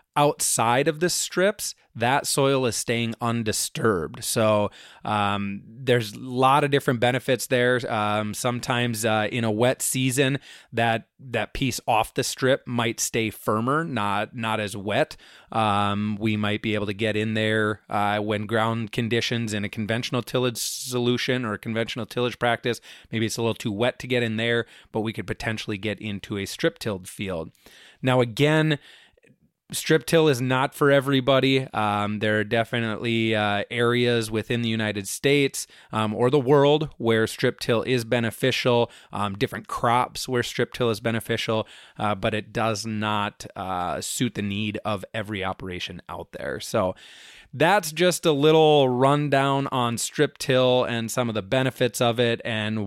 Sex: male